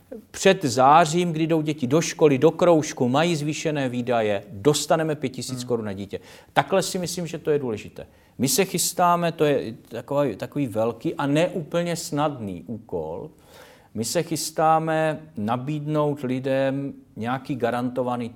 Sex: male